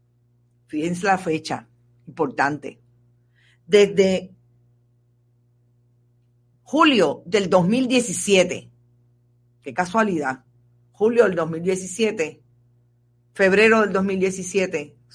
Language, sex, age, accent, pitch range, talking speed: Spanish, female, 40-59, American, 120-205 Hz, 65 wpm